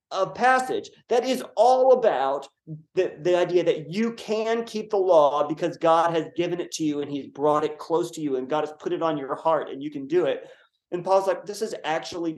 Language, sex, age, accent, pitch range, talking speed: English, male, 30-49, American, 150-230 Hz, 235 wpm